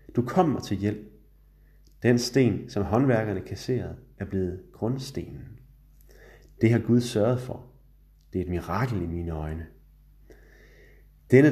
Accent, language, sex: native, Danish, male